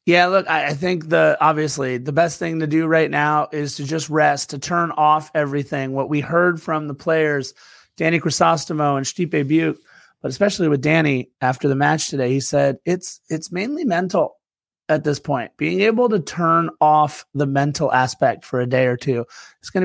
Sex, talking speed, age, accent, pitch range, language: male, 195 wpm, 30-49, American, 145-180 Hz, English